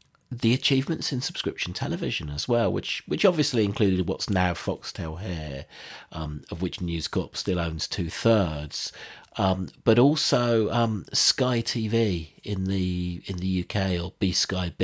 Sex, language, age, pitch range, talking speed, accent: male, English, 40-59, 85-110 Hz, 160 wpm, British